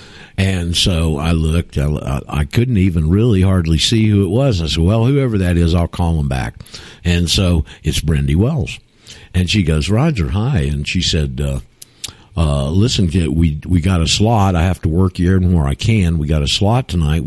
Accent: American